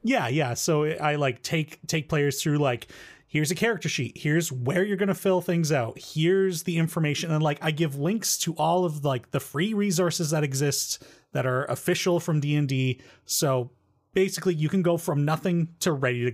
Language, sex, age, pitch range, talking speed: English, male, 30-49, 135-175 Hz, 200 wpm